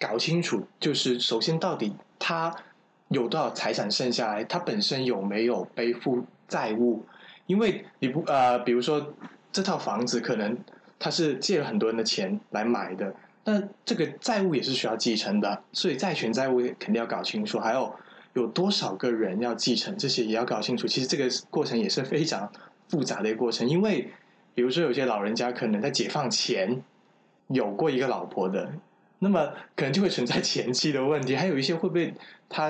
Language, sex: Chinese, male